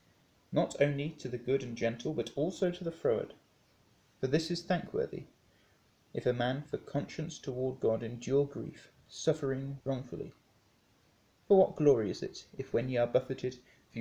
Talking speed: 165 wpm